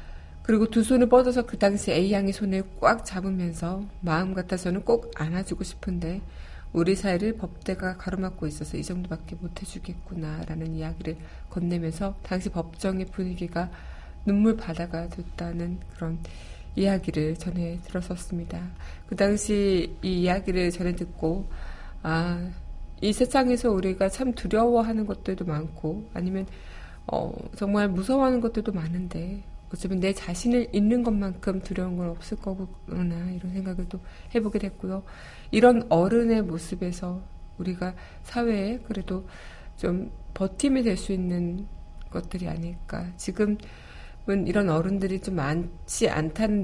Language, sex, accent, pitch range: Korean, female, native, 175-205 Hz